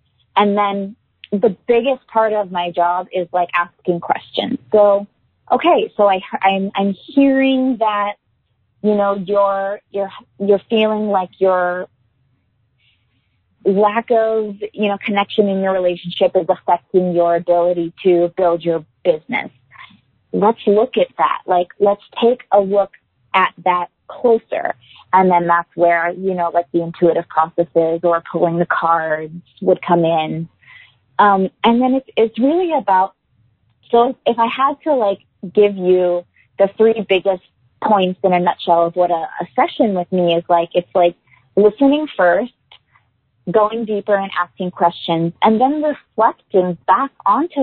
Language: English